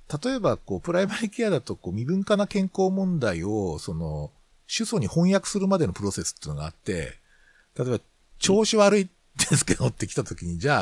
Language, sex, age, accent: Japanese, male, 50-69, native